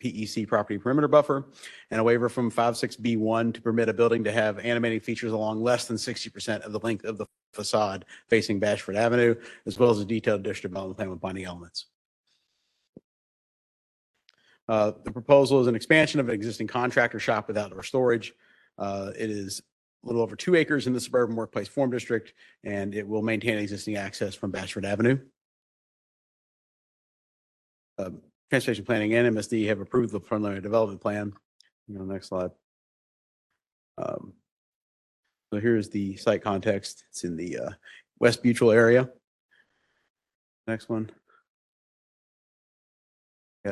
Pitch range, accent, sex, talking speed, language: 105-120 Hz, American, male, 150 wpm, English